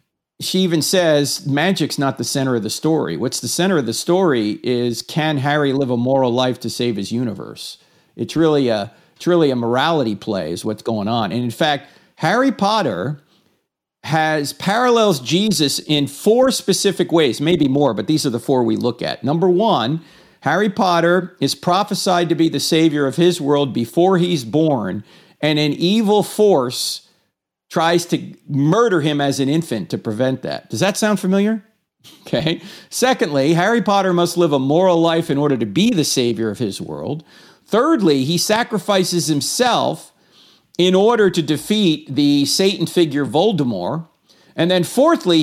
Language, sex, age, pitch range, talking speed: English, male, 50-69, 140-185 Hz, 170 wpm